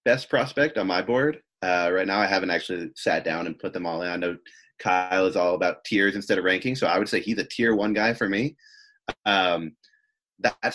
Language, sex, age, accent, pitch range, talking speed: English, male, 30-49, American, 90-130 Hz, 230 wpm